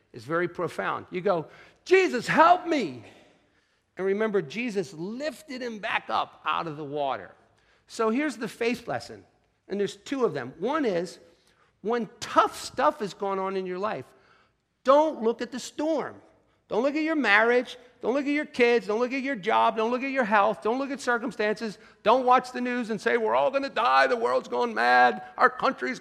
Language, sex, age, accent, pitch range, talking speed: English, male, 50-69, American, 185-255 Hz, 200 wpm